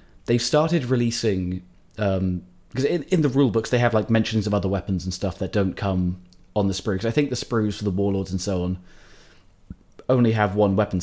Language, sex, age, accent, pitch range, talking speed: English, male, 20-39, British, 95-115 Hz, 210 wpm